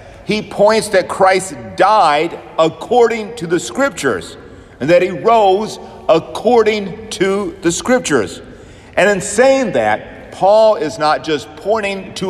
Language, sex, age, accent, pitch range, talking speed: English, male, 50-69, American, 135-200 Hz, 130 wpm